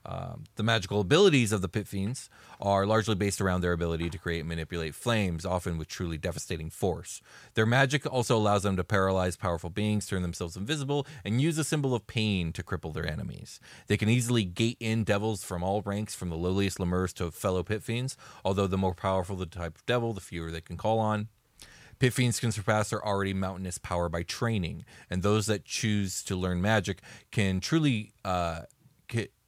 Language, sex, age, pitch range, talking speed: English, male, 30-49, 90-115 Hz, 195 wpm